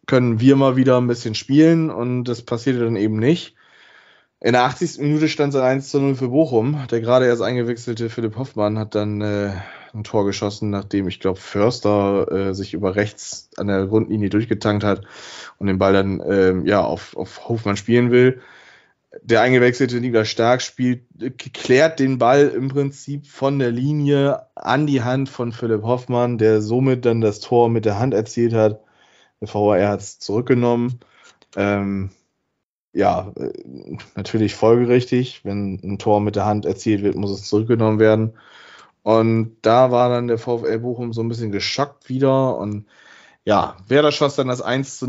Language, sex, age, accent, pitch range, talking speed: German, male, 20-39, German, 110-130 Hz, 175 wpm